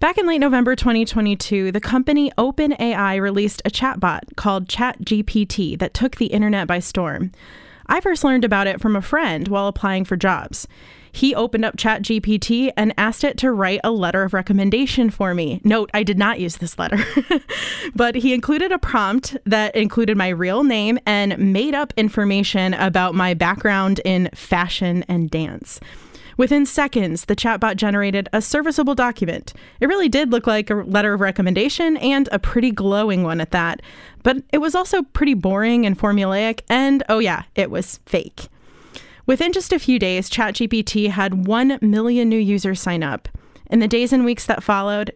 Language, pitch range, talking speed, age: English, 195-245 Hz, 175 wpm, 20-39